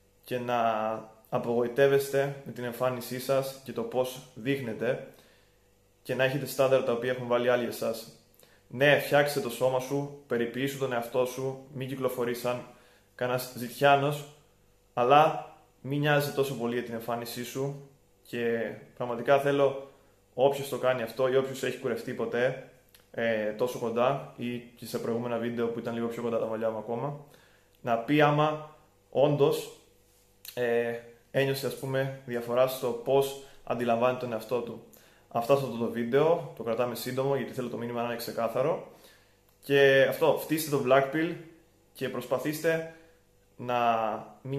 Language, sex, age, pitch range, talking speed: Greek, male, 20-39, 115-135 Hz, 150 wpm